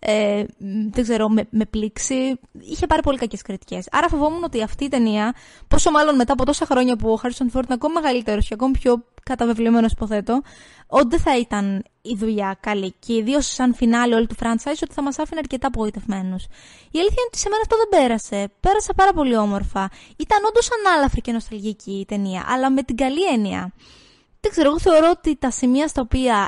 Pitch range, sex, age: 215-290 Hz, female, 20-39